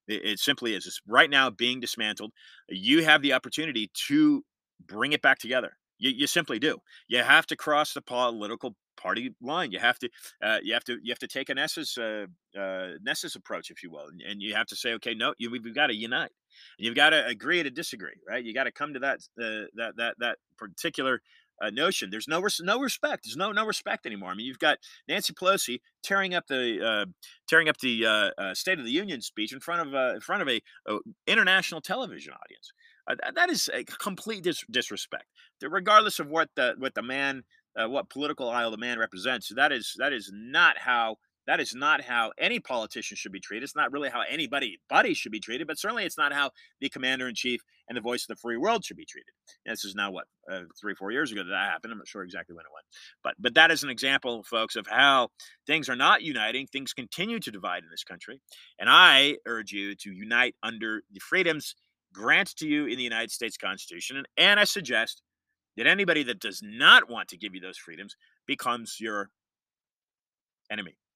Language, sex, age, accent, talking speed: English, male, 30-49, American, 220 wpm